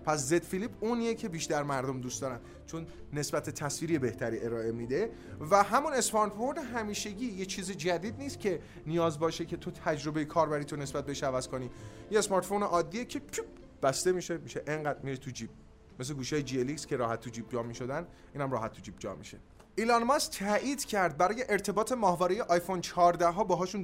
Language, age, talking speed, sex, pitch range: Persian, 30-49, 185 wpm, male, 140-190 Hz